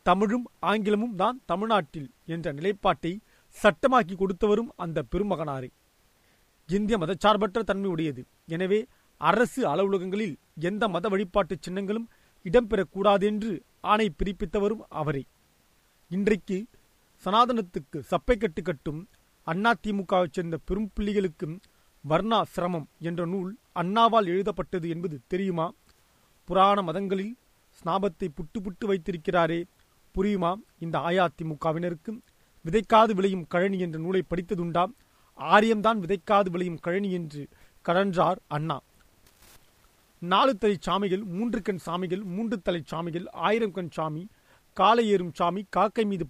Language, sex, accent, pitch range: Tamil, male, native, 175-210 Hz